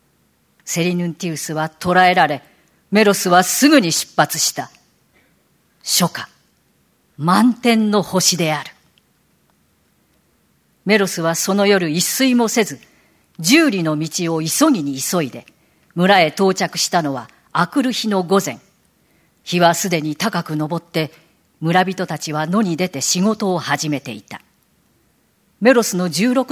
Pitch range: 160-220 Hz